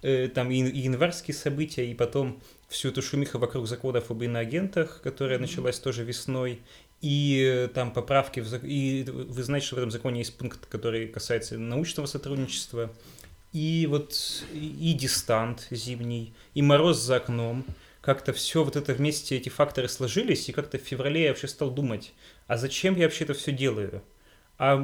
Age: 20-39